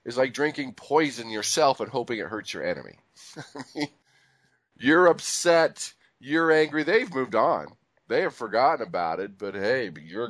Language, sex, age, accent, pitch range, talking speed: English, male, 40-59, American, 115-165 Hz, 150 wpm